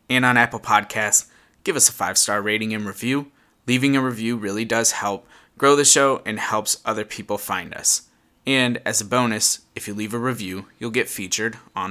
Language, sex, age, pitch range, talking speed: English, male, 20-39, 105-120 Hz, 200 wpm